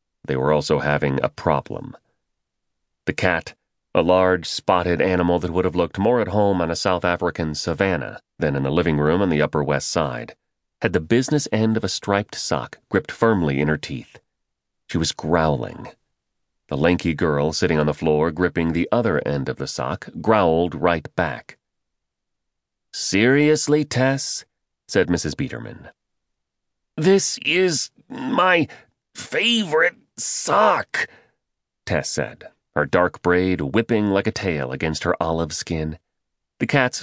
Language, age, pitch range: English, 30-49, 85-130 Hz